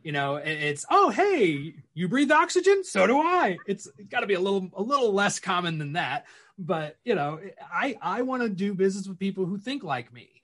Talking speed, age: 220 wpm, 30-49